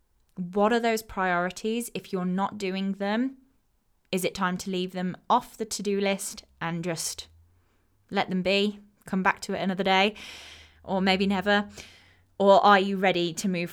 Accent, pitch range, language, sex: British, 175-205 Hz, English, female